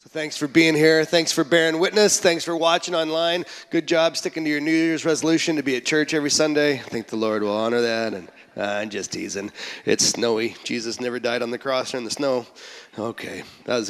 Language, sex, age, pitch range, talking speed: English, male, 30-49, 120-165 Hz, 235 wpm